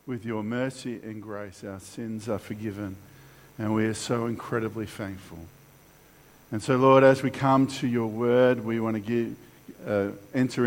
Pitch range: 110-145 Hz